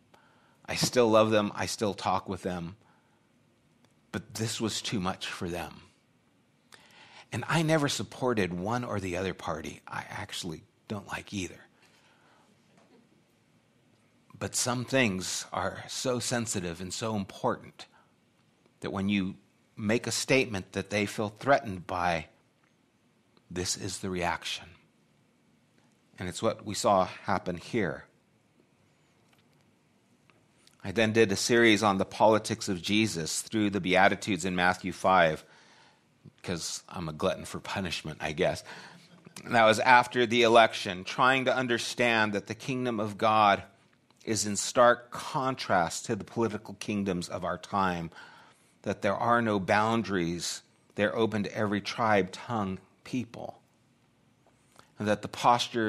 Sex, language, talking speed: male, English, 135 wpm